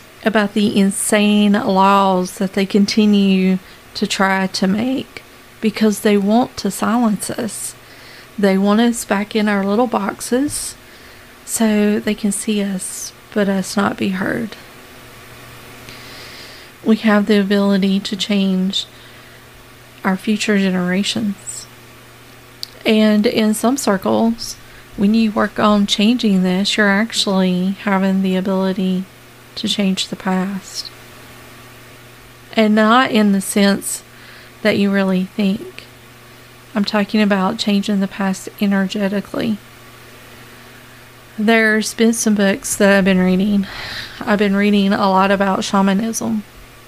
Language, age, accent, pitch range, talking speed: English, 40-59, American, 185-210 Hz, 120 wpm